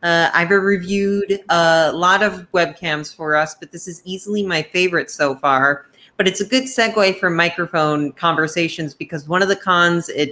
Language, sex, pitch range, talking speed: English, female, 155-190 Hz, 180 wpm